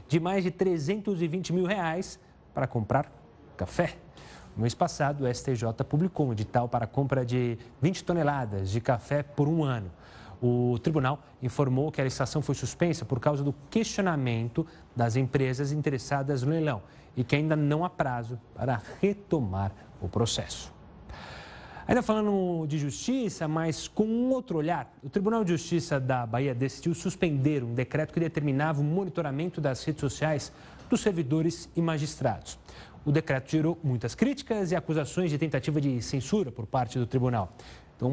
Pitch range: 125-165 Hz